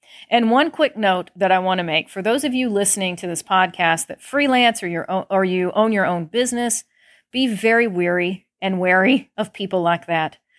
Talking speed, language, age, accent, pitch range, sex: 200 wpm, English, 40-59, American, 185-230 Hz, female